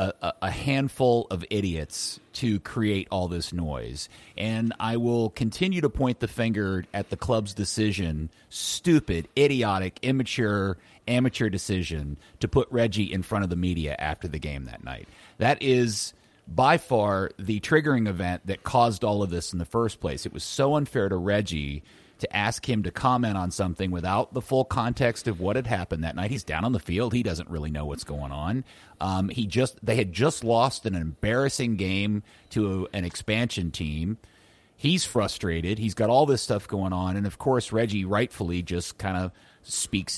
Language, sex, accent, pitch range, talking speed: English, male, American, 90-120 Hz, 185 wpm